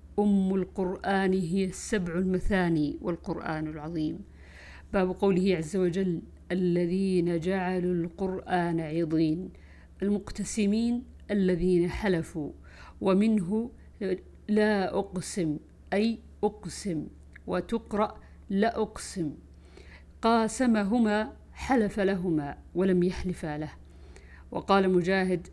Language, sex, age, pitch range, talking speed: Arabic, female, 50-69, 165-195 Hz, 80 wpm